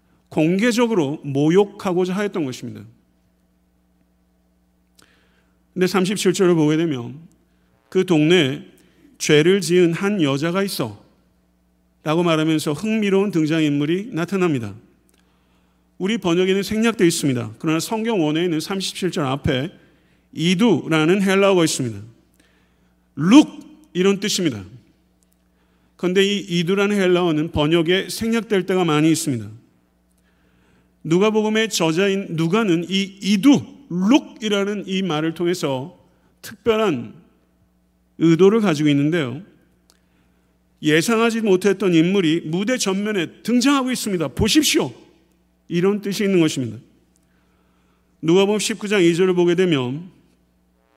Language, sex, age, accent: Korean, male, 50-69, native